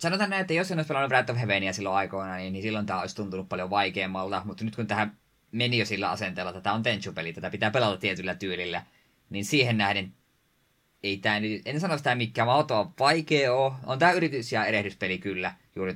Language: Finnish